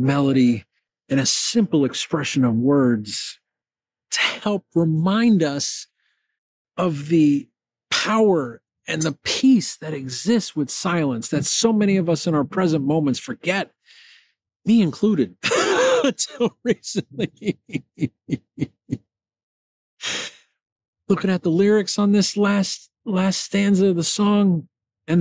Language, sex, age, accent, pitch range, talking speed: English, male, 50-69, American, 170-235 Hz, 115 wpm